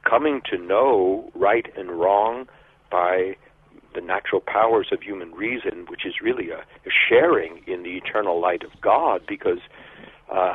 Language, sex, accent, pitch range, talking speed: English, male, American, 345-435 Hz, 150 wpm